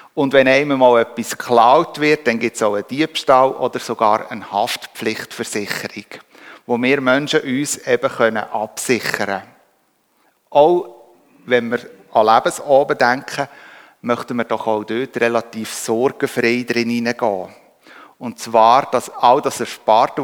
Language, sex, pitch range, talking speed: German, male, 115-140 Hz, 135 wpm